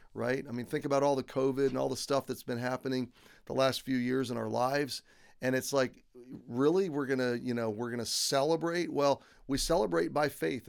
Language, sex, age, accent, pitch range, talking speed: English, male, 40-59, American, 120-140 Hz, 225 wpm